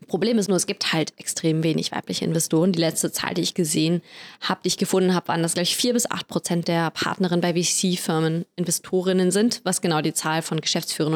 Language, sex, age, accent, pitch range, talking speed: German, female, 20-39, German, 170-195 Hz, 210 wpm